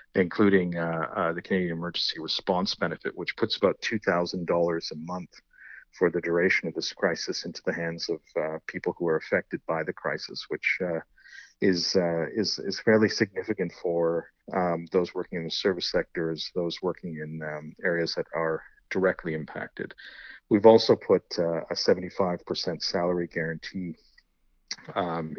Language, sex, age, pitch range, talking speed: English, male, 50-69, 80-90 Hz, 160 wpm